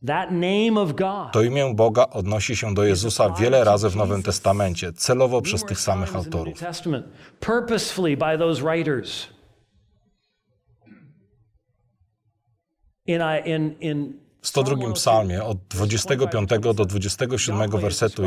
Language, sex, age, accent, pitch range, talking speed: Polish, male, 40-59, native, 105-135 Hz, 80 wpm